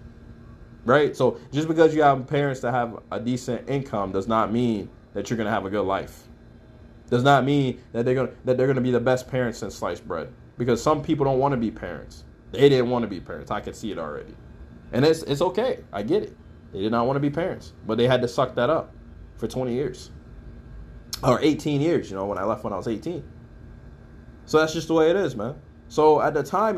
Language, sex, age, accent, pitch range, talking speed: English, male, 20-39, American, 120-160 Hz, 240 wpm